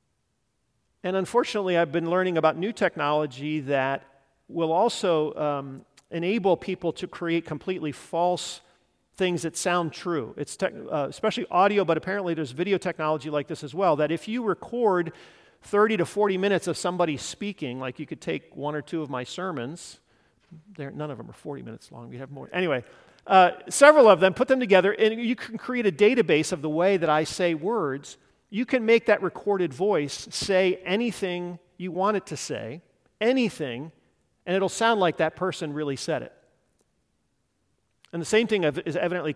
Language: English